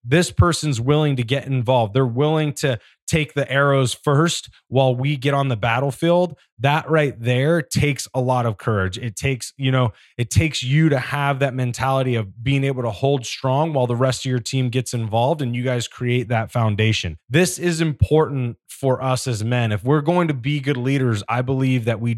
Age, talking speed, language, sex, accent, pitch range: 20-39, 205 wpm, English, male, American, 120-140 Hz